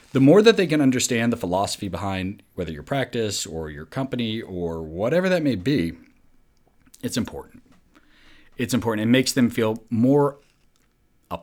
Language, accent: English, American